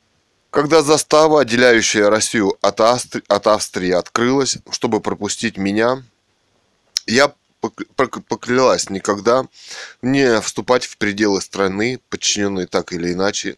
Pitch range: 95-115 Hz